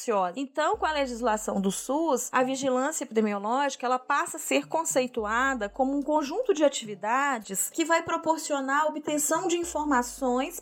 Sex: female